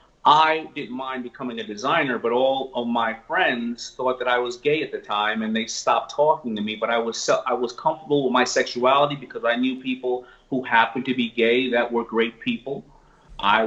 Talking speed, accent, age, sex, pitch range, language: 215 wpm, American, 30-49, male, 115-135 Hz, English